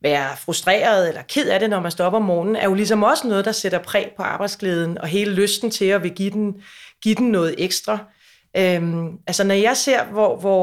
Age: 30-49